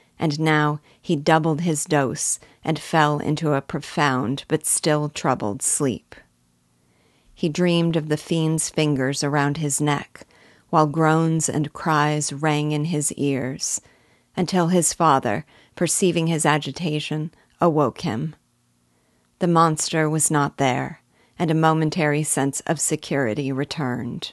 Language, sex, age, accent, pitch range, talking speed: English, female, 40-59, American, 140-165 Hz, 130 wpm